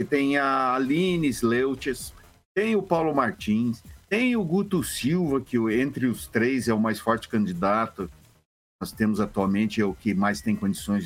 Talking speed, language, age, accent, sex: 170 wpm, Portuguese, 50-69, Brazilian, male